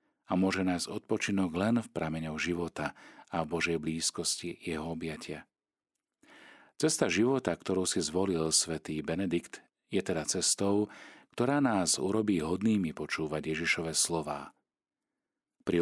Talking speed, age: 120 wpm, 40-59